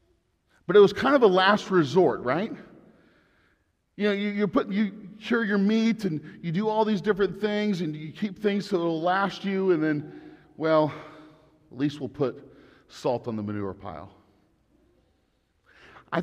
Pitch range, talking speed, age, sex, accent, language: 125-195 Hz, 170 wpm, 40-59, male, American, English